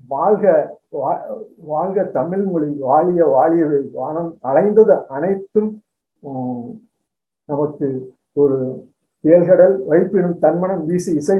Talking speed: 90 wpm